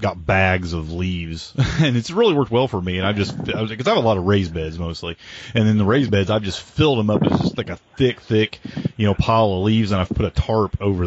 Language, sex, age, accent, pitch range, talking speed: English, male, 30-49, American, 90-110 Hz, 280 wpm